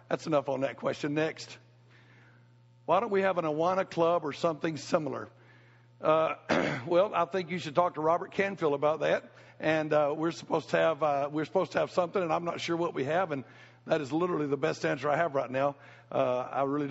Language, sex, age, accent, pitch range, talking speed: English, male, 60-79, American, 155-200 Hz, 215 wpm